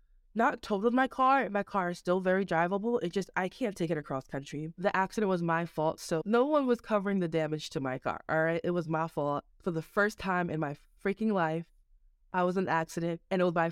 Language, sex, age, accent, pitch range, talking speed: English, female, 20-39, American, 155-190 Hz, 245 wpm